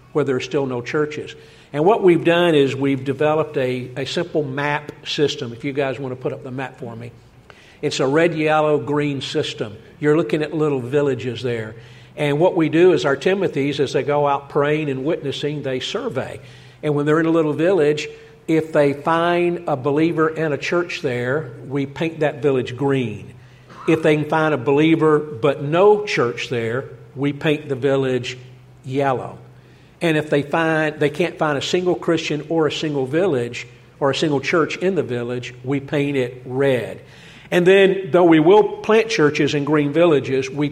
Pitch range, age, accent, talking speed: 135-160 Hz, 50-69, American, 190 wpm